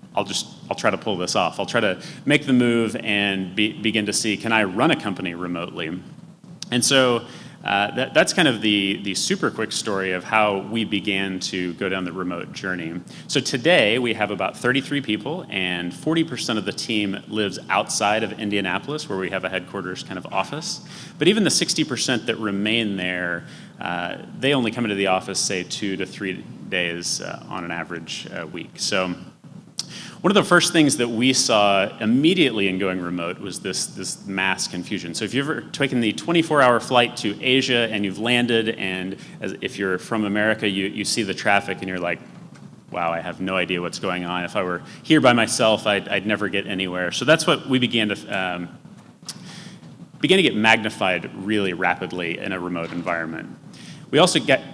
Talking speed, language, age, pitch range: 195 wpm, English, 30-49, 95-130 Hz